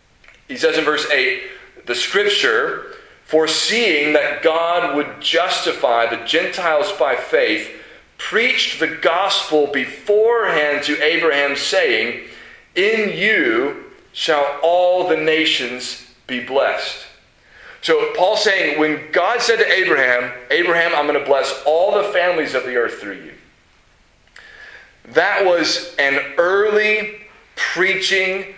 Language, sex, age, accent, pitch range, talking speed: English, male, 40-59, American, 145-240 Hz, 120 wpm